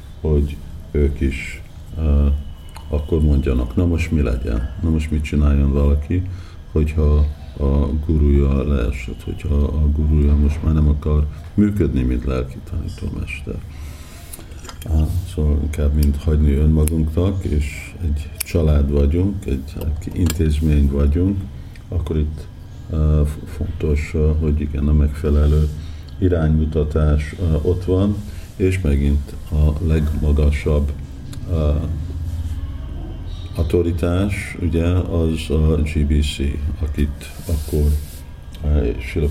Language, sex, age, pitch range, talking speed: Hungarian, male, 50-69, 75-85 Hz, 105 wpm